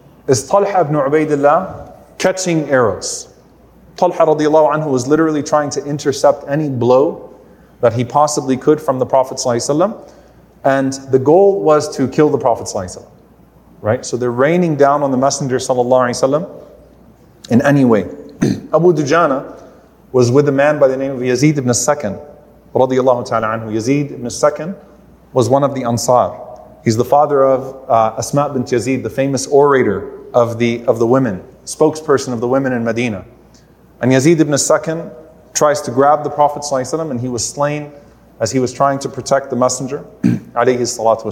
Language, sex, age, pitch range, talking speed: English, male, 30-49, 125-150 Hz, 175 wpm